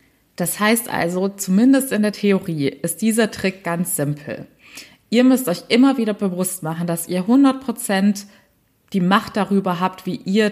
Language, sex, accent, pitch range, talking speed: German, female, German, 175-220 Hz, 160 wpm